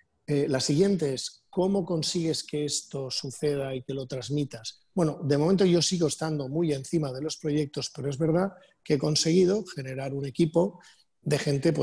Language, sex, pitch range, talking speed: Spanish, male, 135-165 Hz, 180 wpm